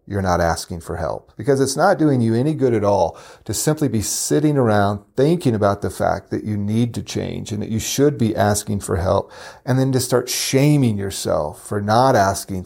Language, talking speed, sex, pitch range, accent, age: English, 215 wpm, male, 100-120 Hz, American, 40-59